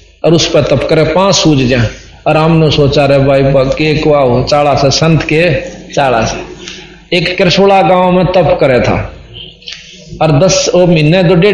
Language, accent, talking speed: Hindi, native, 85 wpm